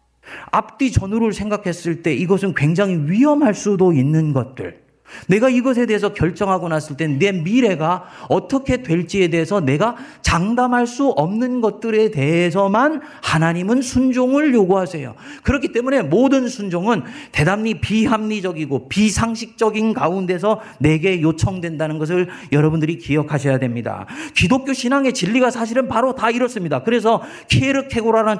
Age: 40-59